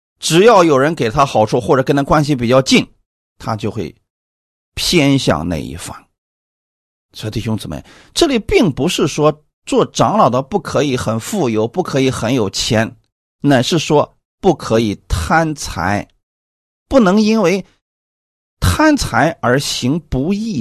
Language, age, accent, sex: Chinese, 30-49, native, male